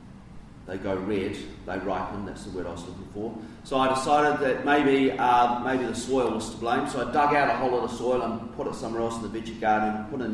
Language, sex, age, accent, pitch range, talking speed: English, male, 40-59, Australian, 100-125 Hz, 255 wpm